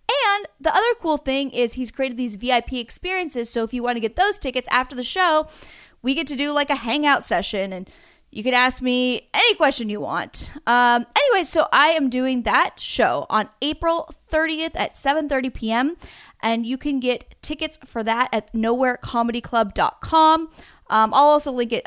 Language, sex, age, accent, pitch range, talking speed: English, female, 10-29, American, 210-295 Hz, 185 wpm